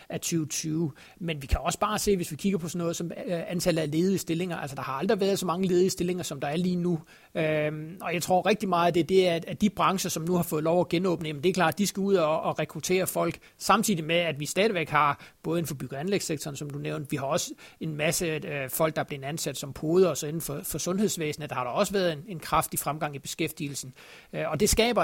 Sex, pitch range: male, 155-180 Hz